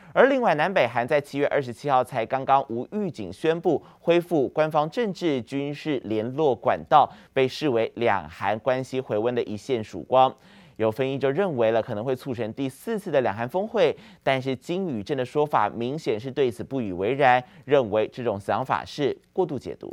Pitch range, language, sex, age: 120-165 Hz, Chinese, male, 30-49